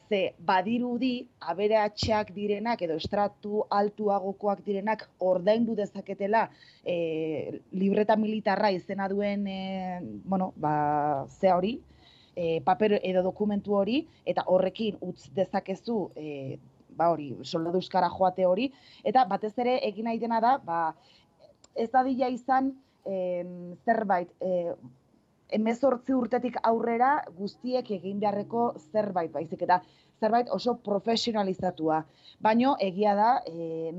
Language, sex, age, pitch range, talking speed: Spanish, female, 20-39, 180-215 Hz, 100 wpm